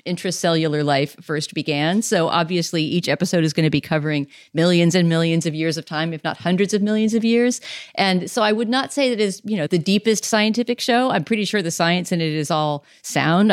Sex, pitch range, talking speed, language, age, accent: female, 155-190 Hz, 220 wpm, English, 40-59, American